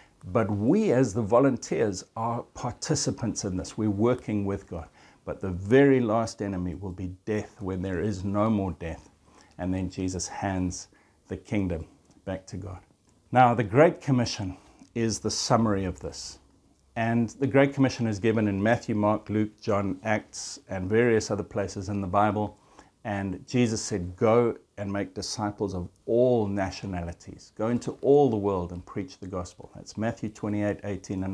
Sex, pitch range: male, 95-115 Hz